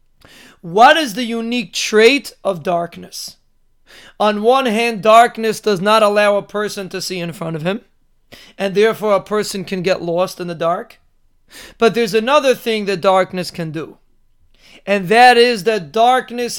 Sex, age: male, 30-49